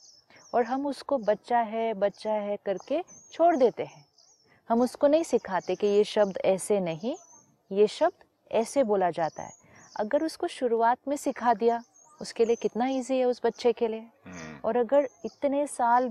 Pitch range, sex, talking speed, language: 190-250 Hz, female, 170 wpm, Hindi